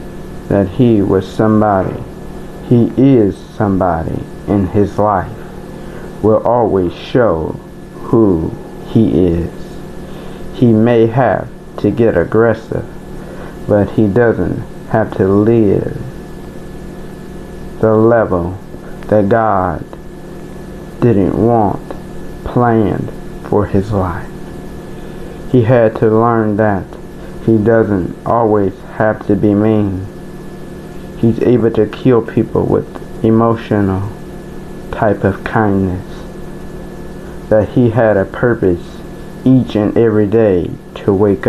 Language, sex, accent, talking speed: English, male, American, 105 wpm